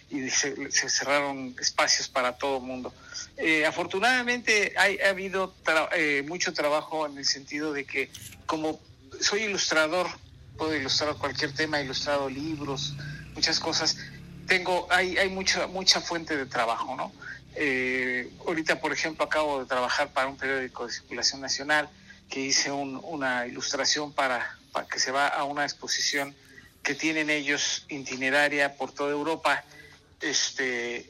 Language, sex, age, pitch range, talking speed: Spanish, male, 50-69, 135-170 Hz, 150 wpm